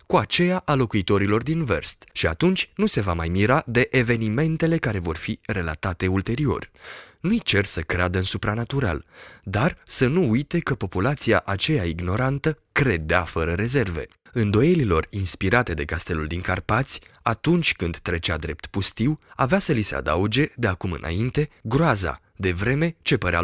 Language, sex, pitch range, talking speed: Romanian, male, 90-135 Hz, 155 wpm